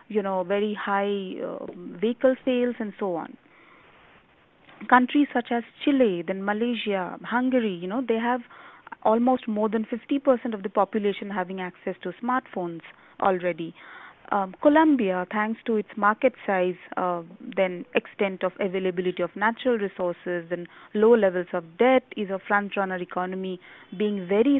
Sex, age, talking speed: female, 30-49, 145 wpm